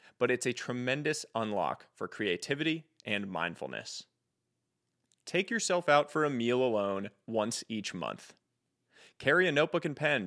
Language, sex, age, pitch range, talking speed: English, male, 30-49, 120-160 Hz, 140 wpm